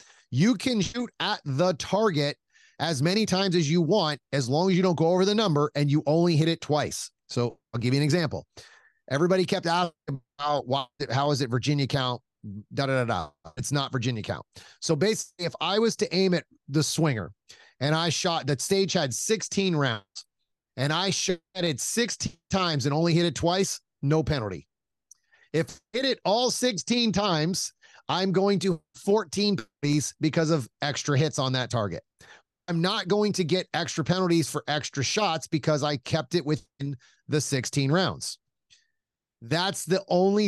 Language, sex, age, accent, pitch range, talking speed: English, male, 30-49, American, 140-180 Hz, 180 wpm